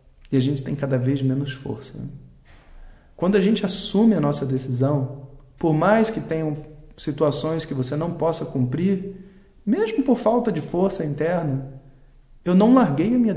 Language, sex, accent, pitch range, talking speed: Portuguese, male, Brazilian, 135-165 Hz, 160 wpm